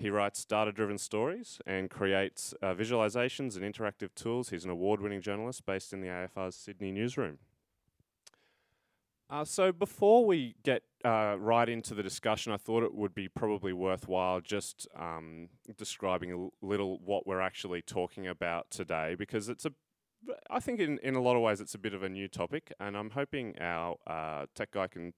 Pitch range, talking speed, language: 90-115 Hz, 185 wpm, English